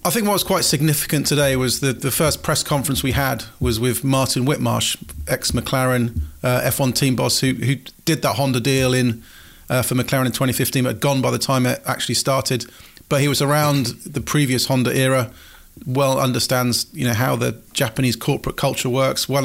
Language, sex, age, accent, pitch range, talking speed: English, male, 30-49, British, 125-145 Hz, 200 wpm